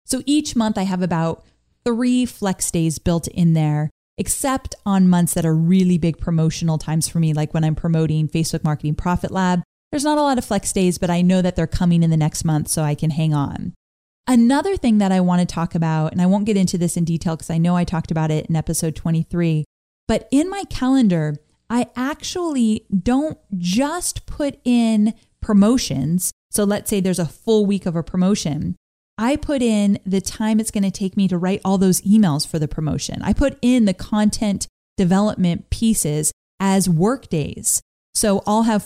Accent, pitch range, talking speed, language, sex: American, 170-220 Hz, 200 wpm, English, female